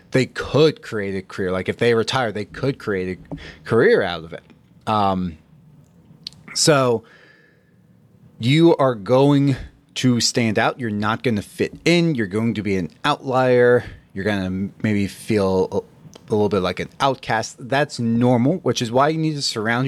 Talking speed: 175 wpm